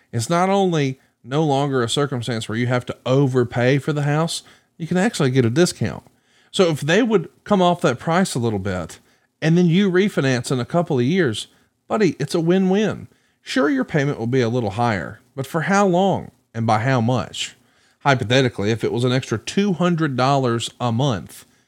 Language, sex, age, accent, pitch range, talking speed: English, male, 40-59, American, 125-175 Hz, 195 wpm